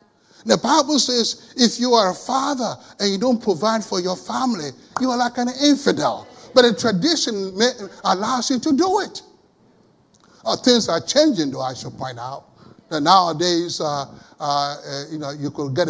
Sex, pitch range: male, 170-250 Hz